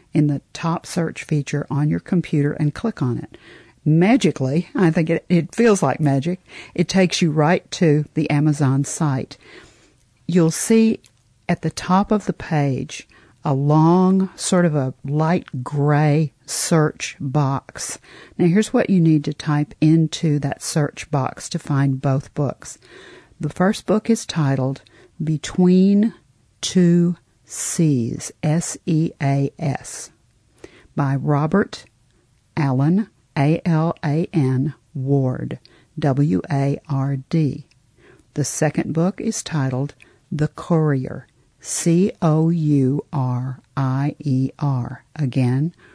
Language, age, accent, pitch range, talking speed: English, 50-69, American, 135-170 Hz, 110 wpm